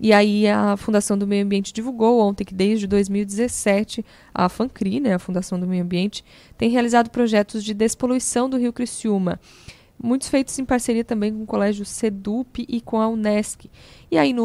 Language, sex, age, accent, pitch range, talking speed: Portuguese, female, 10-29, Brazilian, 195-235 Hz, 185 wpm